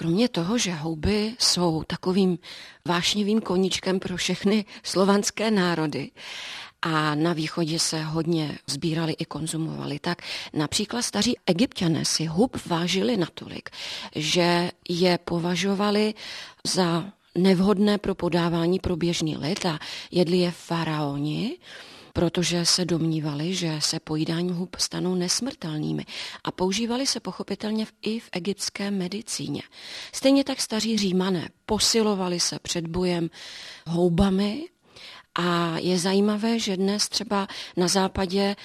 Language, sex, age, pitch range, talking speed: Czech, female, 40-59, 165-195 Hz, 120 wpm